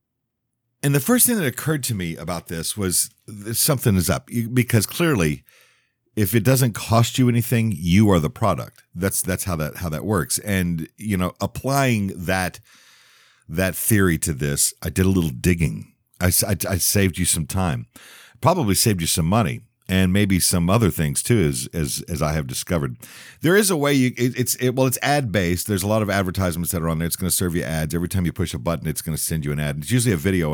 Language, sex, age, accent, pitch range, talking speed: English, male, 50-69, American, 85-120 Hz, 225 wpm